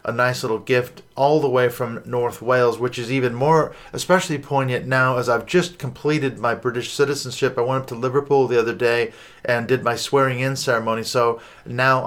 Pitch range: 120-135 Hz